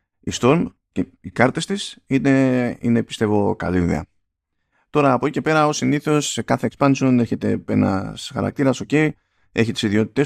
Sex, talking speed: male, 160 wpm